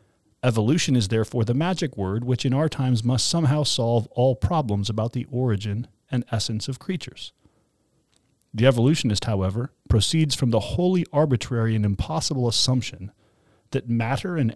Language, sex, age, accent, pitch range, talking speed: English, male, 40-59, American, 110-145 Hz, 150 wpm